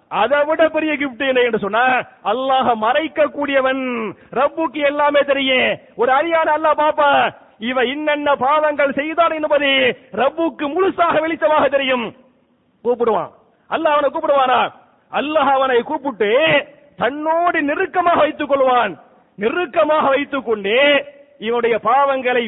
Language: English